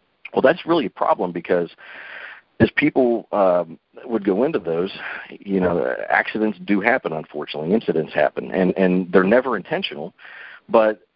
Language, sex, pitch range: English, male, 85-105 Hz